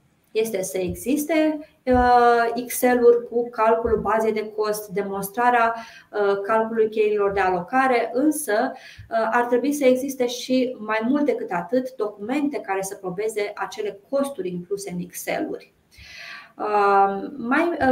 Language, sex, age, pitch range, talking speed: Romanian, female, 20-39, 200-255 Hz, 115 wpm